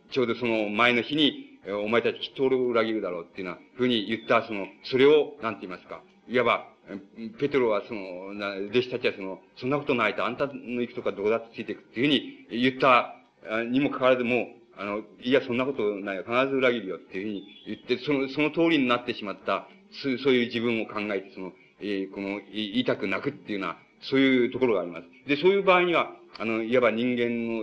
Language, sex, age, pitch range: Japanese, male, 40-59, 115-145 Hz